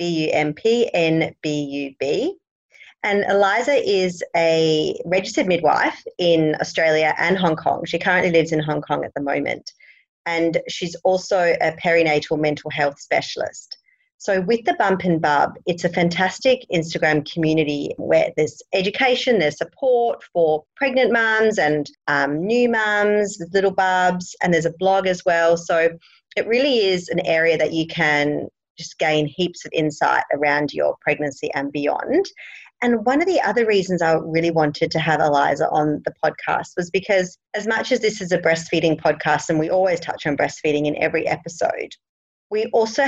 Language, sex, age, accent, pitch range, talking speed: English, female, 30-49, Australian, 155-195 Hz, 160 wpm